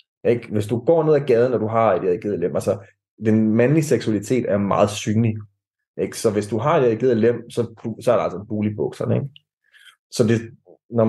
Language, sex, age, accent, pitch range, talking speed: Danish, male, 20-39, native, 110-140 Hz, 210 wpm